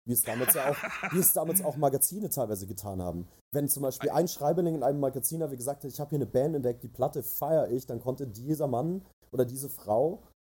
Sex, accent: male, German